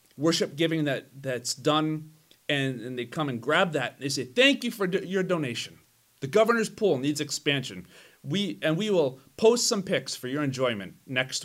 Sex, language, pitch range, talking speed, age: male, English, 125-185 Hz, 185 wpm, 30-49